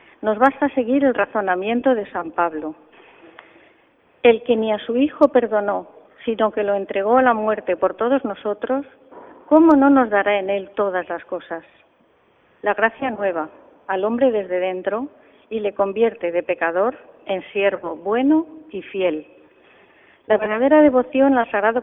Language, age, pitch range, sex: Spanish, 40-59, 195-255 Hz, female